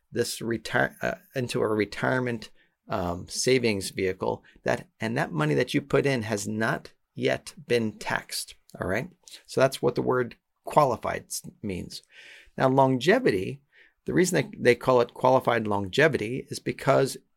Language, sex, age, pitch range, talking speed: English, male, 40-59, 115-150 Hz, 150 wpm